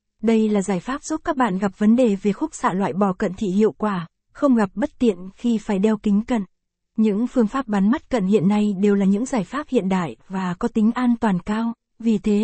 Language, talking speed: Vietnamese, 245 wpm